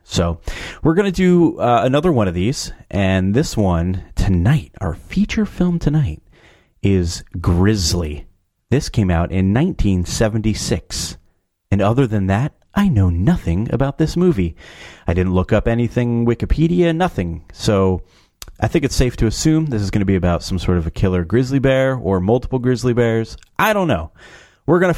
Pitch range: 90-130 Hz